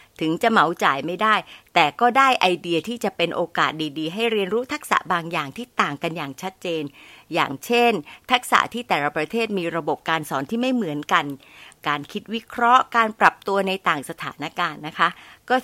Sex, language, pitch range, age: female, Thai, 165-230 Hz, 60-79